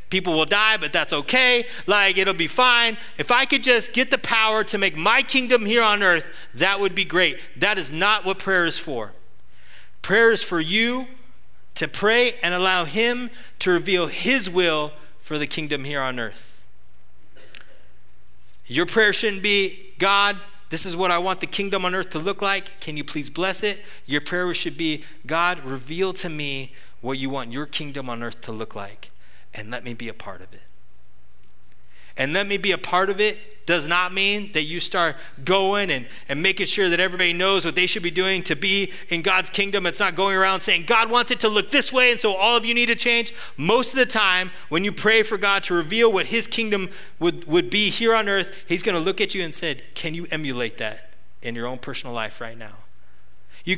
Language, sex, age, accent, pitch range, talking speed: English, male, 30-49, American, 150-205 Hz, 215 wpm